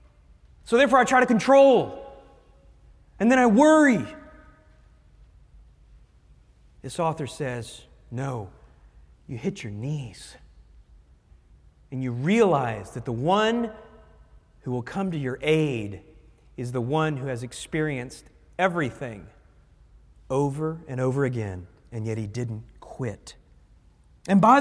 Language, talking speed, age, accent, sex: English, 115 wpm, 40-59, American, male